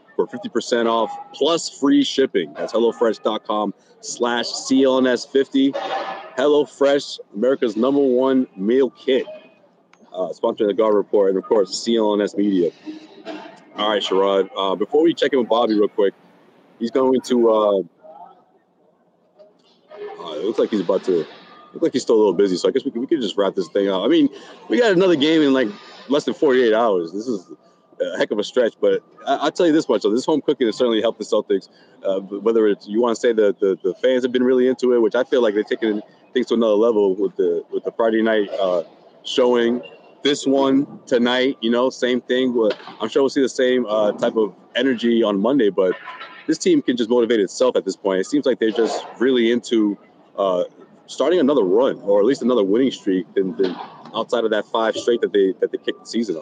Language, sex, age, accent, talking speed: English, male, 30-49, American, 205 wpm